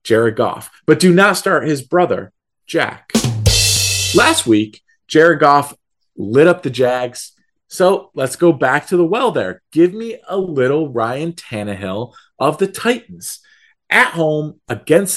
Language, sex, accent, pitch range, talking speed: English, male, American, 120-160 Hz, 145 wpm